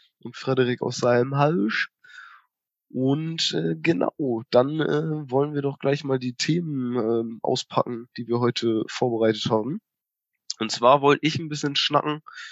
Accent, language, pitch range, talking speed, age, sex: German, German, 115-145 Hz, 150 wpm, 20-39, male